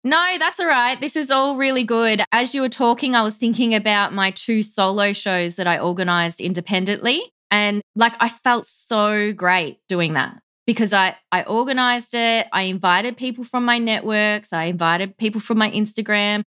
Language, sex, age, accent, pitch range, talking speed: English, female, 20-39, Australian, 175-215 Hz, 180 wpm